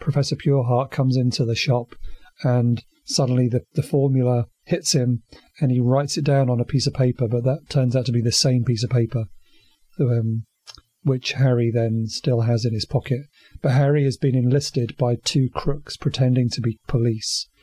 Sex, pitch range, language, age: male, 120-135 Hz, English, 30-49